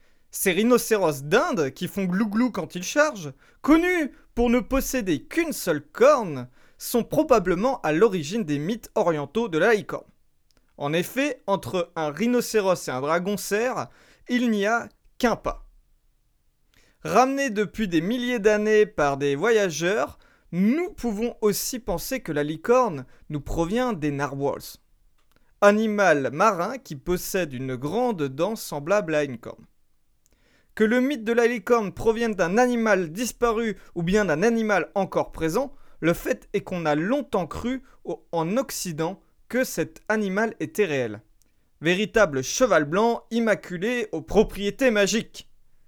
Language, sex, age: French, male, 30-49